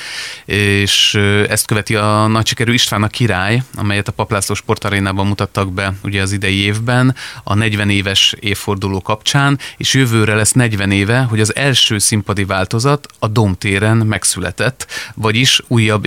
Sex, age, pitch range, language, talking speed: male, 30-49, 100-115 Hz, Hungarian, 140 wpm